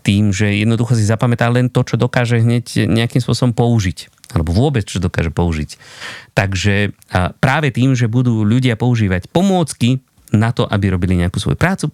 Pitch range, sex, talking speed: 95-130 Hz, male, 165 wpm